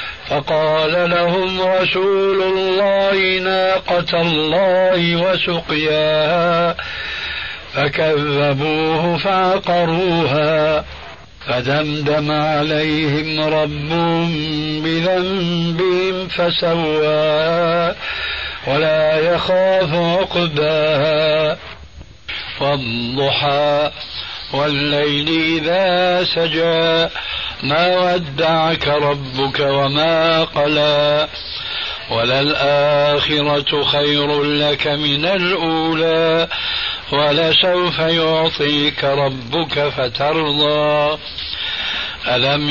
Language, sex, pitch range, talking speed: Arabic, male, 145-175 Hz, 50 wpm